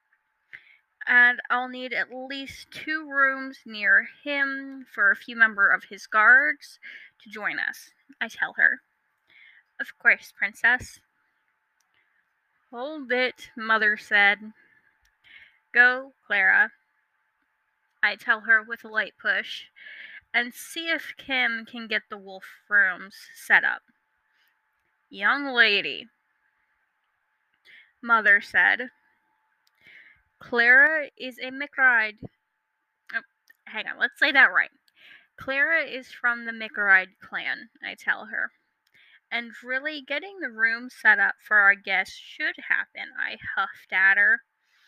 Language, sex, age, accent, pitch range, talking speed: English, female, 10-29, American, 220-270 Hz, 120 wpm